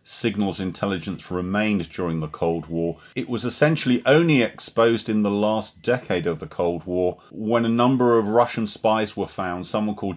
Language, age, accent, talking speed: English, 40-59, British, 175 wpm